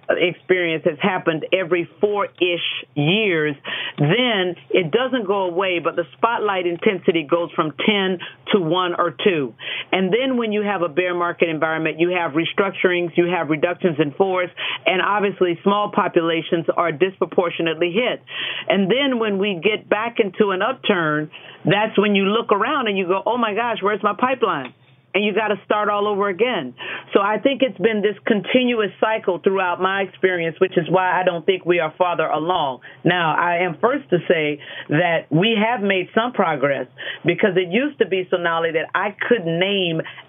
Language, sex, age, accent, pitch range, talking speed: English, female, 50-69, American, 170-210 Hz, 180 wpm